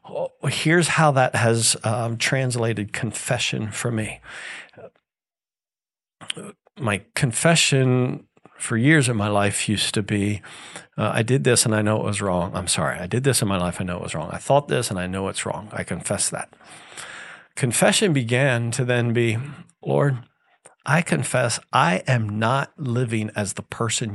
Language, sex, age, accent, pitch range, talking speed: English, male, 50-69, American, 115-145 Hz, 170 wpm